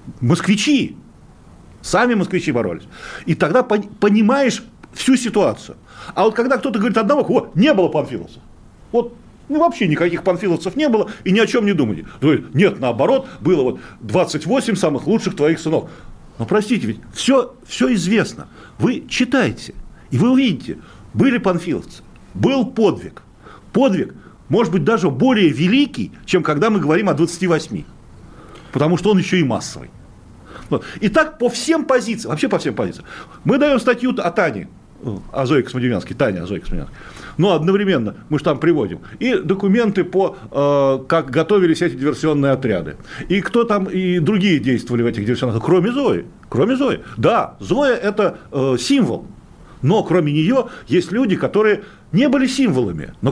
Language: Russian